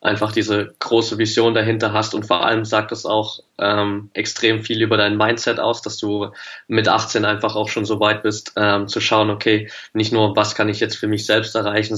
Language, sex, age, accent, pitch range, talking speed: German, male, 20-39, German, 105-110 Hz, 215 wpm